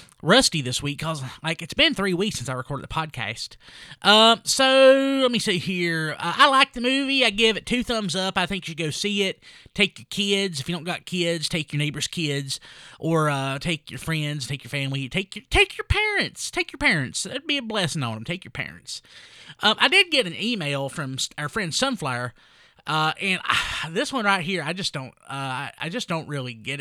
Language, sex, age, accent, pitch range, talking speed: English, male, 20-39, American, 140-205 Hz, 230 wpm